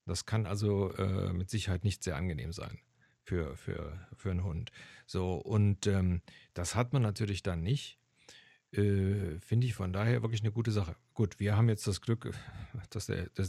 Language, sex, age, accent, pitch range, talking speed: German, male, 40-59, German, 100-125 Hz, 185 wpm